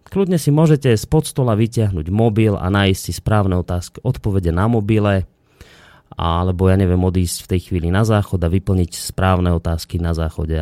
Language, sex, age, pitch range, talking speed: Slovak, male, 30-49, 85-115 Hz, 170 wpm